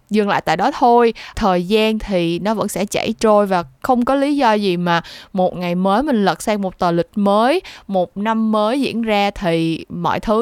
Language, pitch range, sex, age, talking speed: Vietnamese, 185-240 Hz, female, 20-39, 220 wpm